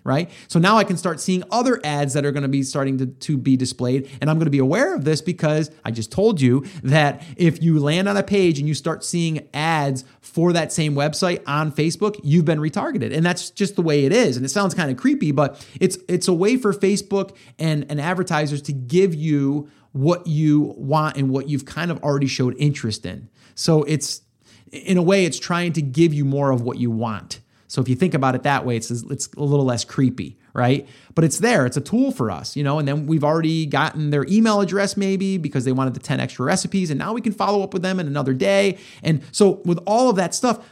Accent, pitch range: American, 135-185 Hz